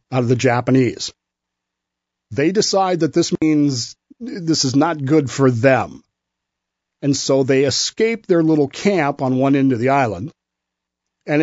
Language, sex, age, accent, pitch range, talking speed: English, male, 40-59, American, 100-155 Hz, 150 wpm